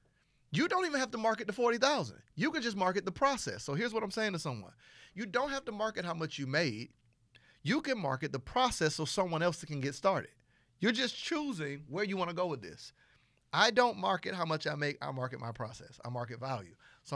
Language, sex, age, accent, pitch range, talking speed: English, male, 40-59, American, 125-175 Hz, 230 wpm